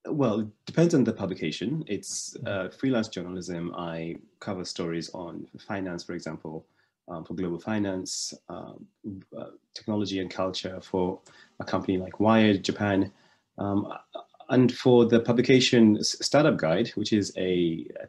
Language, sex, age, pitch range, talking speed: English, male, 30-49, 90-105 Hz, 145 wpm